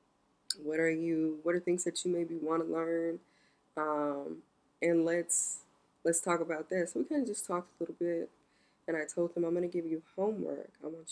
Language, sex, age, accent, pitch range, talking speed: English, female, 20-39, American, 150-175 Hz, 210 wpm